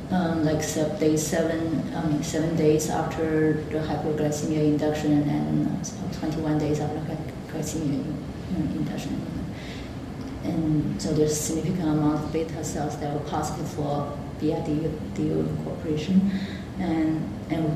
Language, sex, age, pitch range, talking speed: English, female, 30-49, 150-160 Hz, 120 wpm